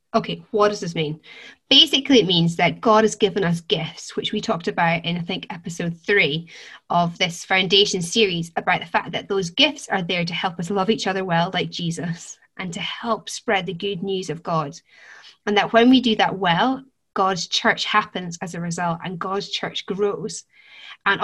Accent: British